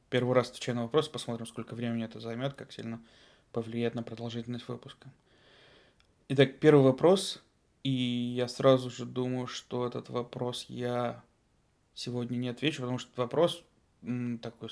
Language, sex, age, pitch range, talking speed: Russian, male, 20-39, 120-135 Hz, 145 wpm